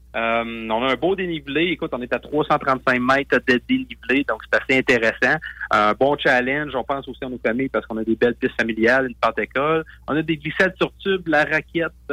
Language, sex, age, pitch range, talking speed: French, male, 30-49, 115-145 Hz, 225 wpm